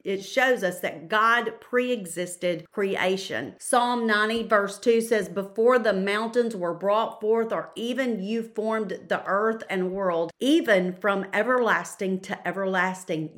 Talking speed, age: 140 wpm, 40-59